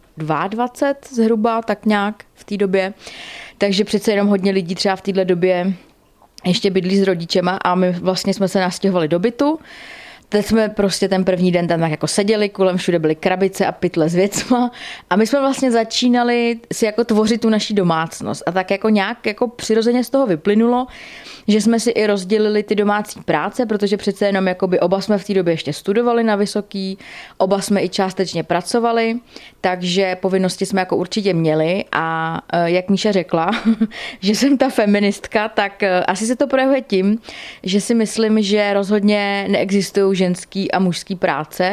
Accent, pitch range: native, 175-210 Hz